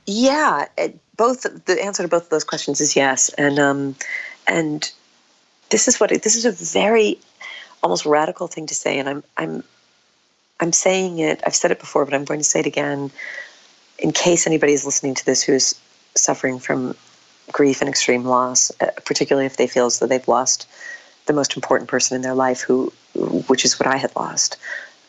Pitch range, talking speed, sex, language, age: 130-155 Hz, 190 wpm, female, English, 40-59